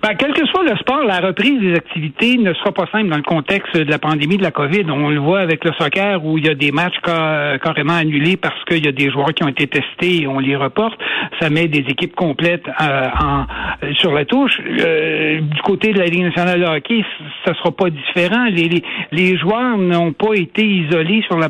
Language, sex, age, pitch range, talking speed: French, male, 60-79, 160-195 Hz, 235 wpm